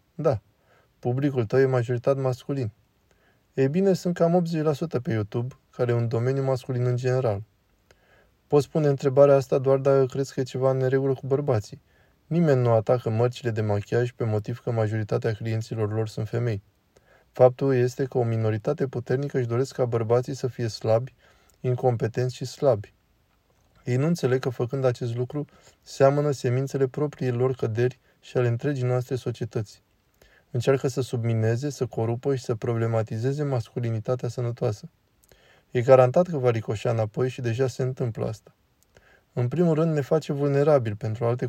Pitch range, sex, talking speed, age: 115-135 Hz, male, 160 wpm, 20-39